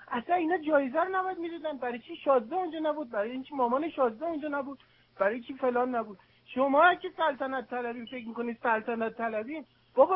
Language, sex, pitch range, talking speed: Persian, male, 255-325 Hz, 175 wpm